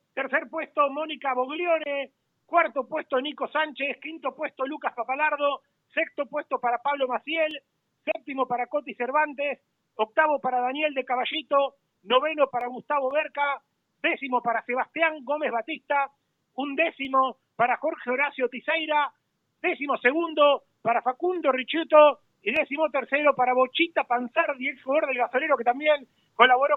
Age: 40-59